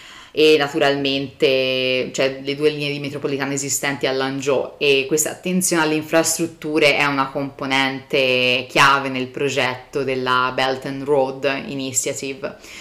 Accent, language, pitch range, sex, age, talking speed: native, Italian, 135-155 Hz, female, 30-49, 120 wpm